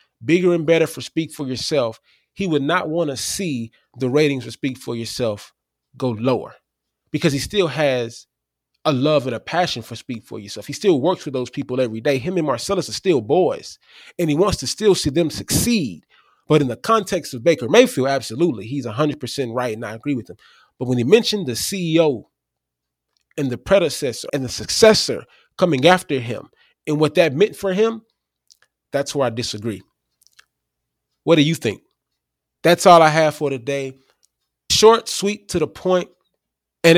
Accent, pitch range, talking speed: American, 115-165 Hz, 185 wpm